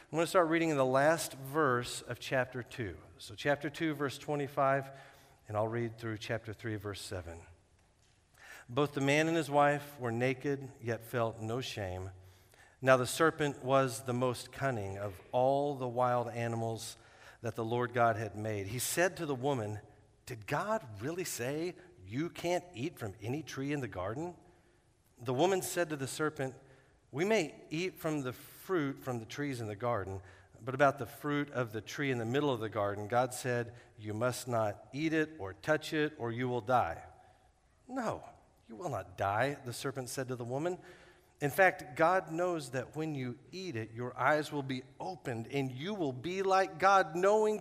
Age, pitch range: 50-69, 115-145 Hz